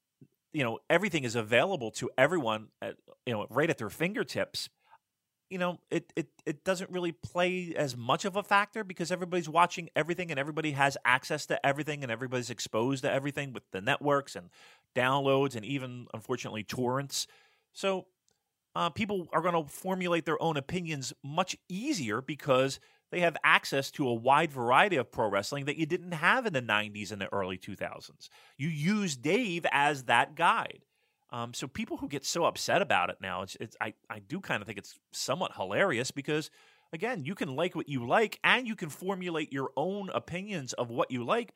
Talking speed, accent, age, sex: 190 wpm, American, 30-49, male